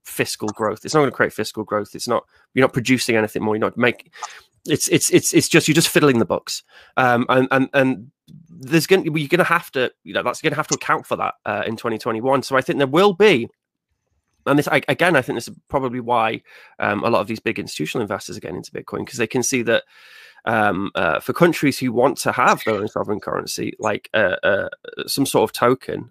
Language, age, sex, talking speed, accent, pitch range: English, 20-39, male, 240 wpm, British, 115-135 Hz